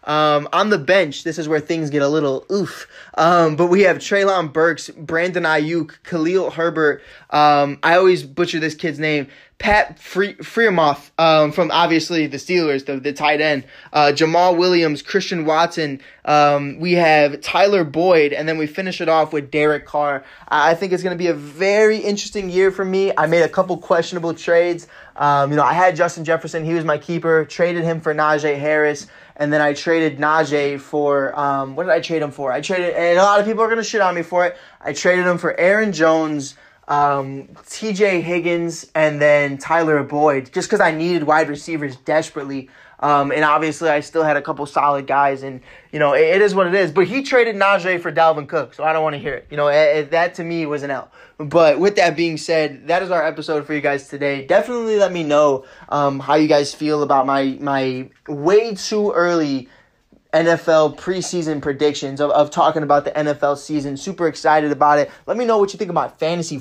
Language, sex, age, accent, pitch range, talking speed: English, male, 20-39, American, 145-175 Hz, 210 wpm